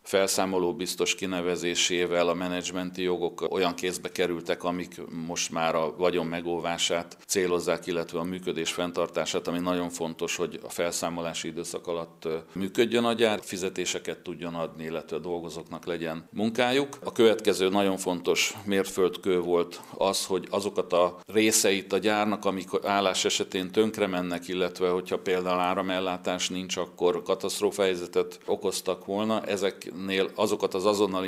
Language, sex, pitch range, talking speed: Hungarian, male, 85-95 Hz, 135 wpm